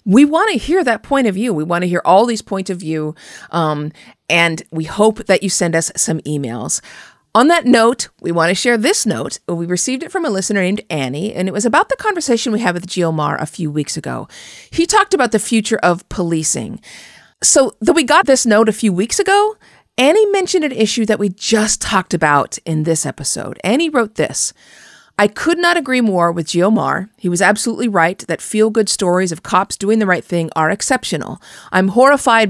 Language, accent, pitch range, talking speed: English, American, 160-220 Hz, 210 wpm